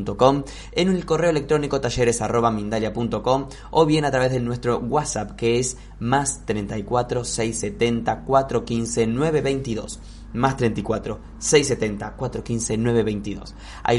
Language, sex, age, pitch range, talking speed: Spanish, male, 20-39, 110-130 Hz, 105 wpm